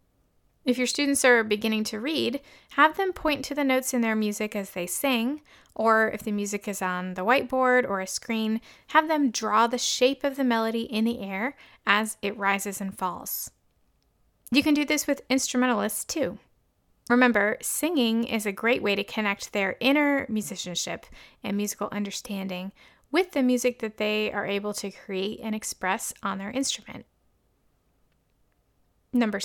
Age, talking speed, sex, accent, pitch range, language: 30-49, 165 wpm, female, American, 205-260 Hz, English